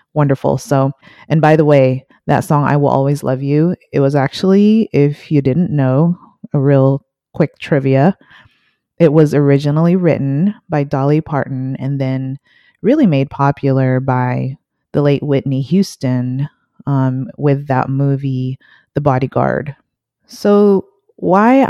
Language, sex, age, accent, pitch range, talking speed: English, female, 30-49, American, 135-170 Hz, 135 wpm